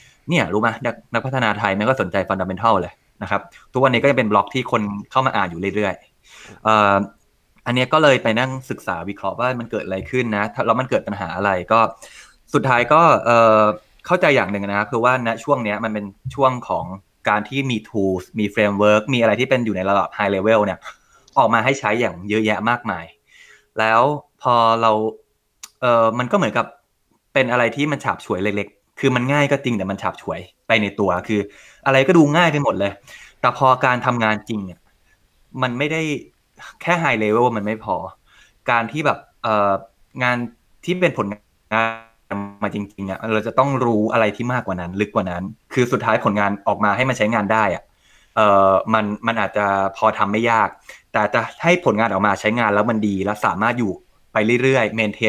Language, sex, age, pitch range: Thai, male, 20-39, 100-125 Hz